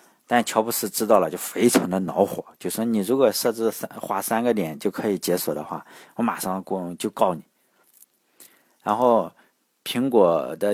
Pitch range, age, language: 90-115 Hz, 50-69, Chinese